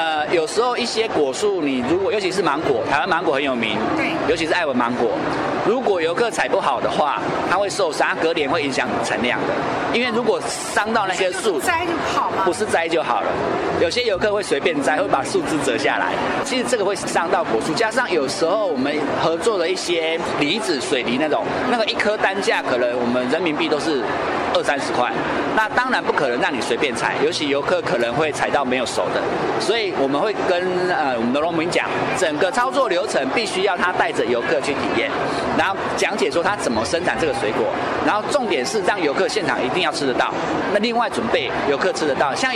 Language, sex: Chinese, male